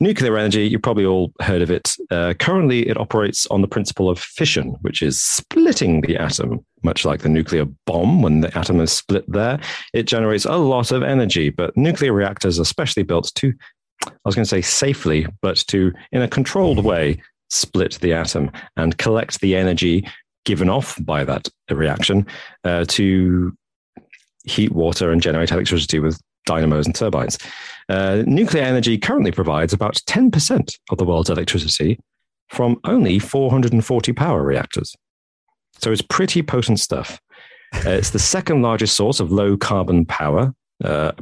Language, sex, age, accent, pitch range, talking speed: English, male, 40-59, British, 85-110 Hz, 165 wpm